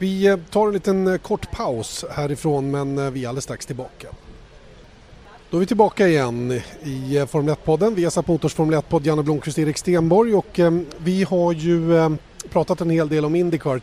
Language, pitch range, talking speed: Swedish, 145-175 Hz, 165 wpm